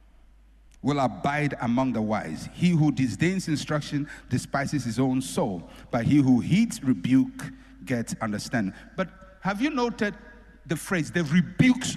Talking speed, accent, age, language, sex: 140 wpm, Nigerian, 50-69, English, male